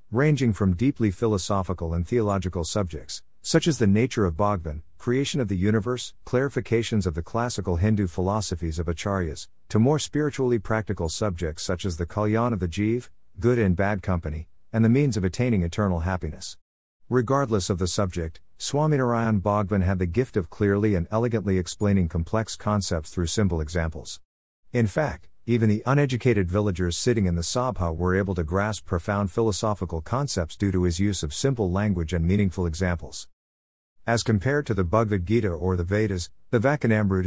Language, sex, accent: English, male, American